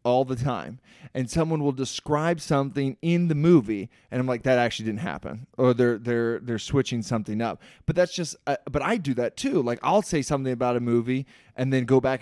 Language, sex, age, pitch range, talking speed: English, male, 20-39, 115-140 Hz, 220 wpm